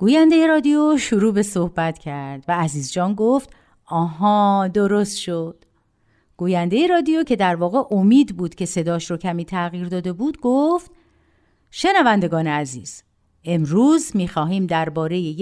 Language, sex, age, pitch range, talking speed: Persian, female, 50-69, 165-270 Hz, 130 wpm